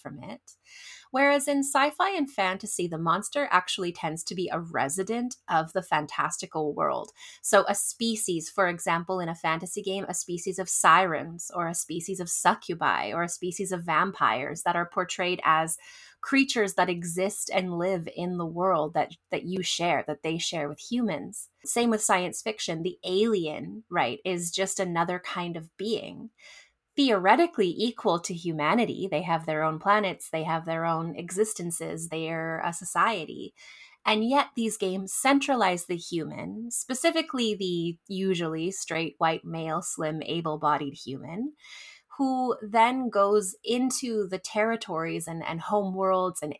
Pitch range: 165-215 Hz